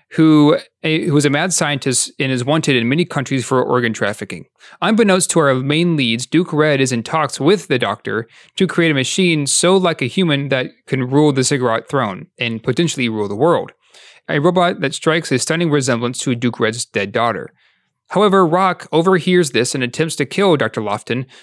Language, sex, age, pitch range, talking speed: English, male, 30-49, 125-170 Hz, 190 wpm